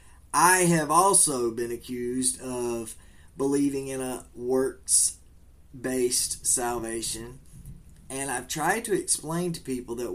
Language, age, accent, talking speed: English, 20-39, American, 120 wpm